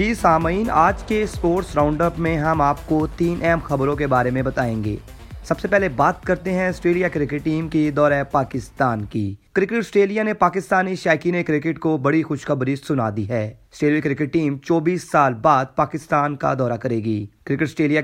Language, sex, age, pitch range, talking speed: Urdu, male, 30-49, 140-180 Hz, 190 wpm